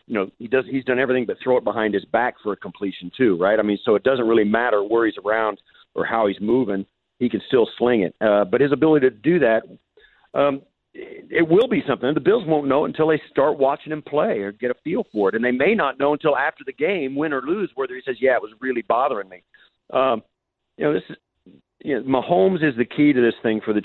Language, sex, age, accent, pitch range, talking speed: English, male, 50-69, American, 110-140 Hz, 260 wpm